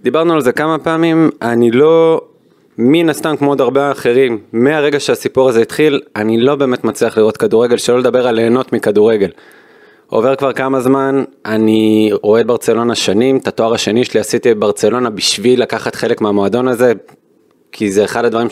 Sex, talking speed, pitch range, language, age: male, 170 wpm, 120-175 Hz, Hebrew, 20-39